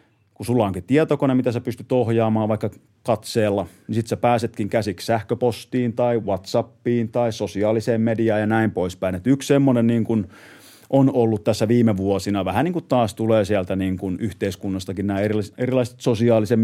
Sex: male